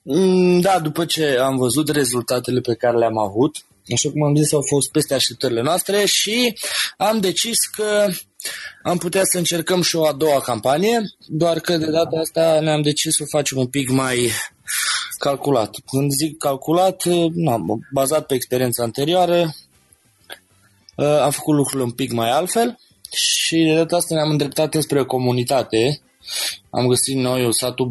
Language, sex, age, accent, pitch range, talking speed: Romanian, male, 20-39, native, 115-150 Hz, 160 wpm